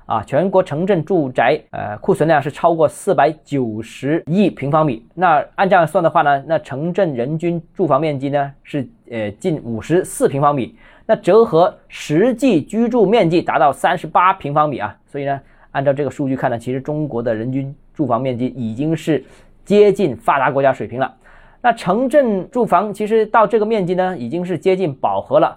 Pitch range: 140-200 Hz